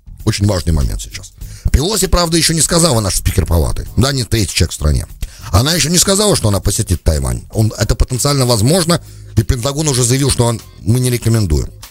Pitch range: 95-140 Hz